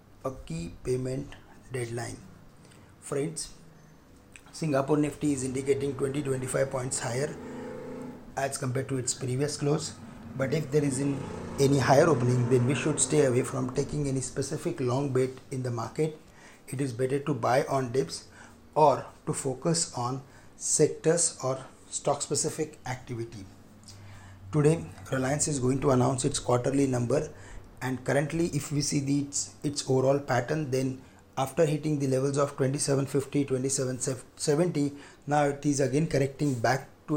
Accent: Indian